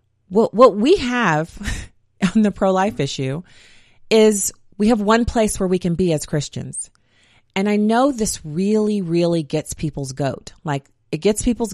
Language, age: English, 30-49